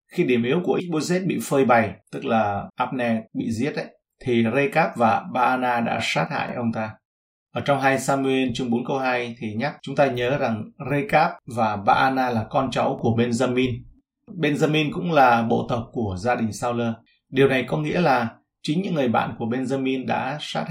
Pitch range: 115-140 Hz